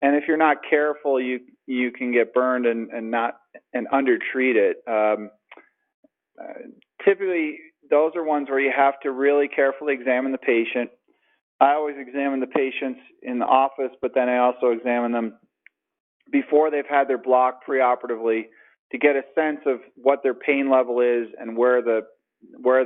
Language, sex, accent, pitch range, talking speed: English, male, American, 120-150 Hz, 175 wpm